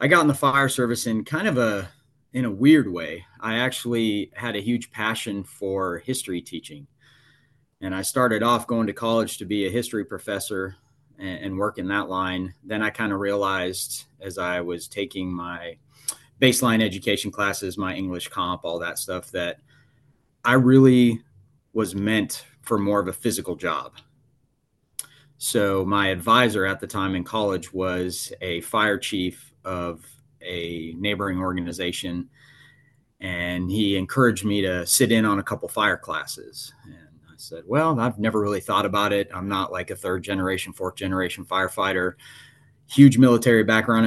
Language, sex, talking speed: English, male, 165 wpm